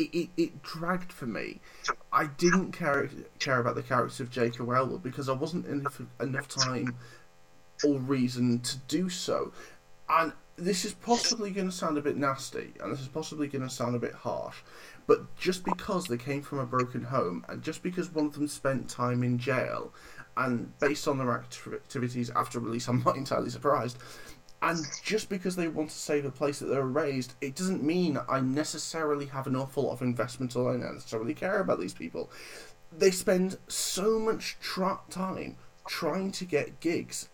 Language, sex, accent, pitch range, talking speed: English, male, British, 125-180 Hz, 190 wpm